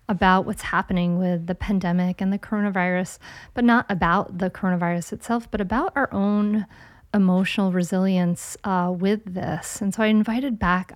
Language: English